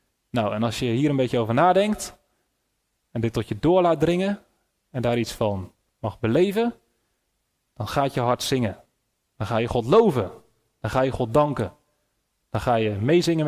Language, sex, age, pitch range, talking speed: Dutch, male, 30-49, 115-180 Hz, 185 wpm